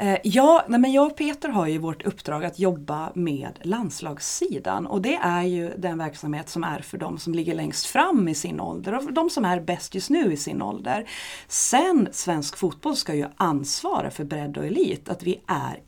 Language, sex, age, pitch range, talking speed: Swedish, female, 30-49, 170-255 Hz, 205 wpm